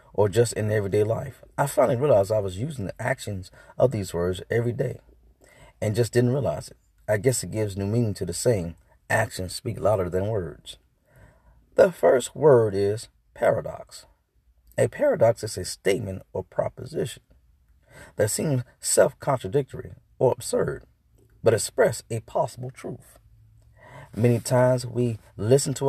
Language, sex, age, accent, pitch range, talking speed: English, male, 40-59, American, 100-130 Hz, 150 wpm